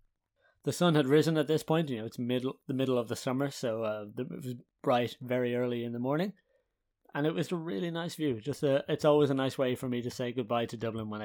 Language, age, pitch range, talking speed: English, 30-49, 120-145 Hz, 255 wpm